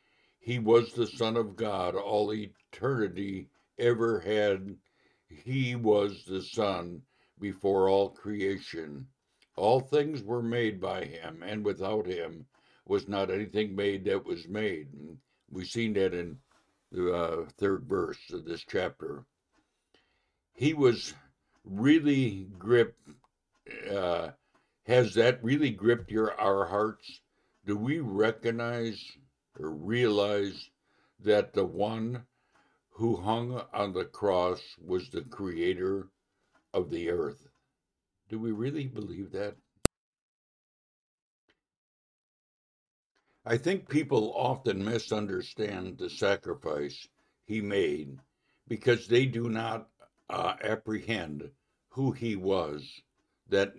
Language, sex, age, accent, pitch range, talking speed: English, male, 60-79, American, 95-115 Hz, 110 wpm